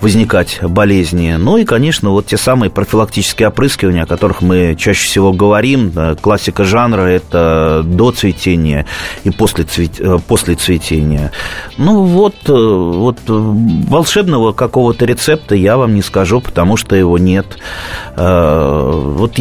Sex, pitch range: male, 95-130 Hz